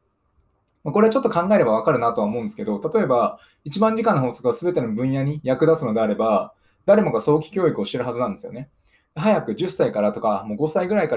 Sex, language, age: male, Japanese, 20-39